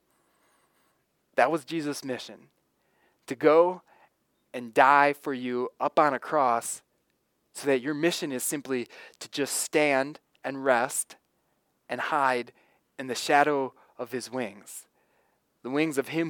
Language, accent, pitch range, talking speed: English, American, 130-150 Hz, 135 wpm